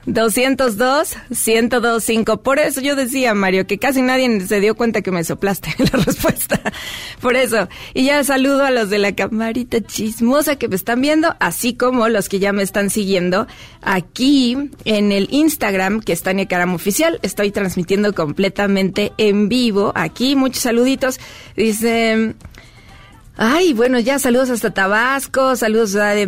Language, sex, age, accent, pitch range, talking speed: Spanish, female, 30-49, Mexican, 190-245 Hz, 155 wpm